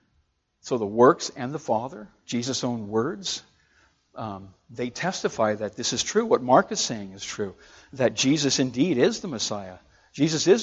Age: 60-79